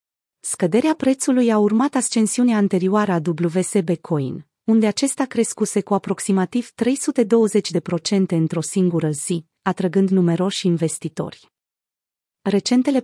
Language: Romanian